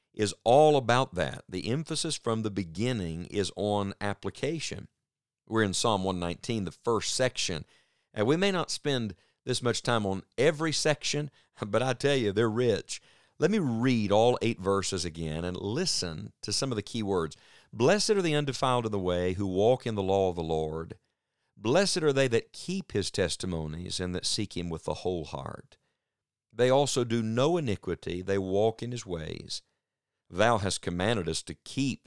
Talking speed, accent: 180 wpm, American